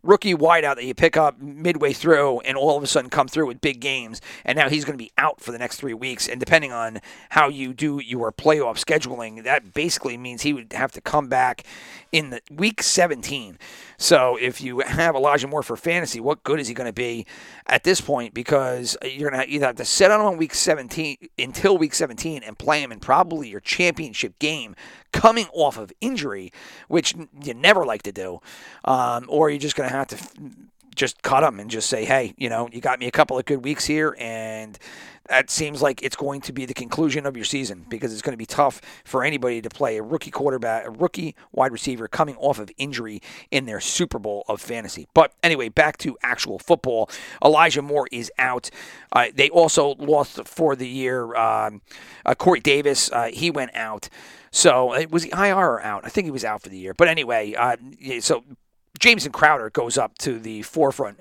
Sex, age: male, 40-59